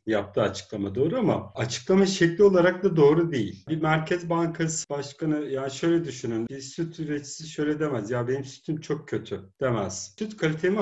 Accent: native